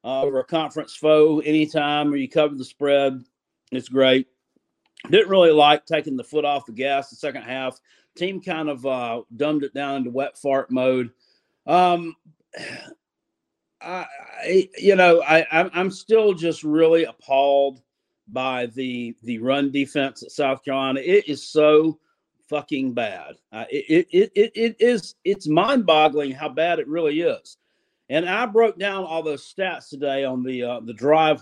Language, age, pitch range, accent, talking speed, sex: English, 40-59, 135-180 Hz, American, 165 wpm, male